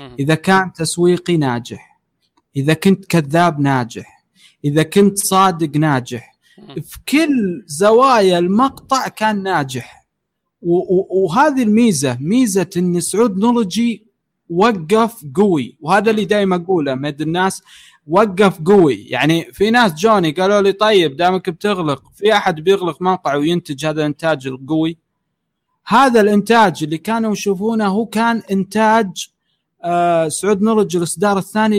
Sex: male